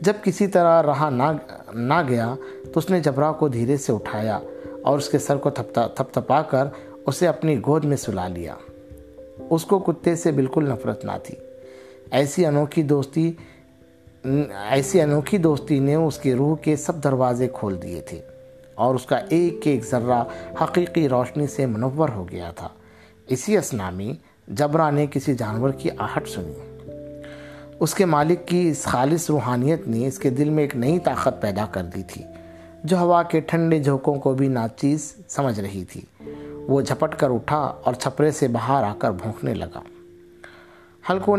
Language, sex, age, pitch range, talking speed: Urdu, male, 50-69, 115-155 Hz, 170 wpm